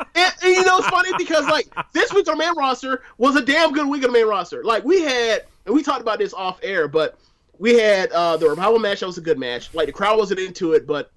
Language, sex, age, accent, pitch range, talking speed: English, male, 30-49, American, 155-215 Hz, 275 wpm